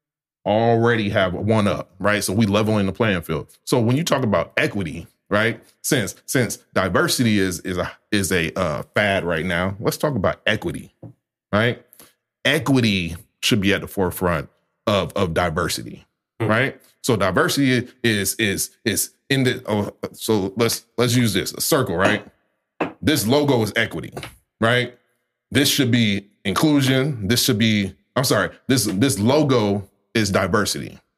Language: English